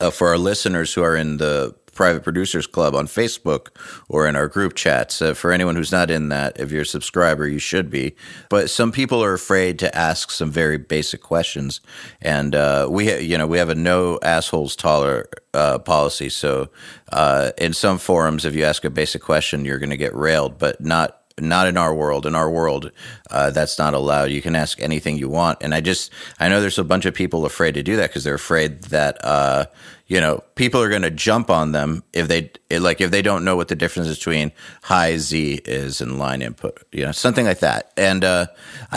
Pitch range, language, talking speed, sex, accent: 75-90 Hz, English, 230 wpm, male, American